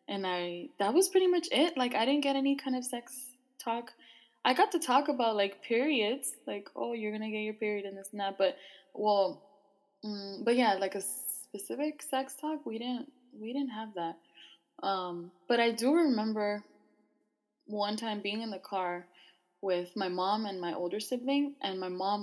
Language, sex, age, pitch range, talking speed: English, female, 10-29, 180-240 Hz, 190 wpm